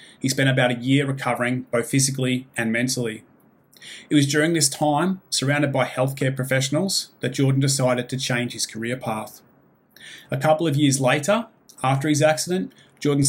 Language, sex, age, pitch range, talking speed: English, male, 30-49, 125-150 Hz, 165 wpm